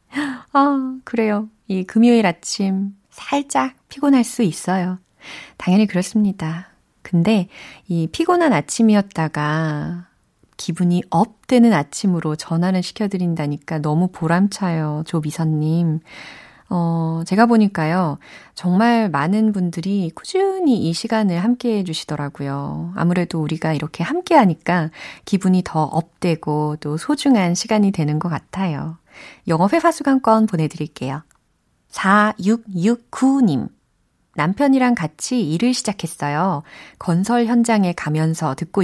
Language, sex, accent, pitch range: Korean, female, native, 165-225 Hz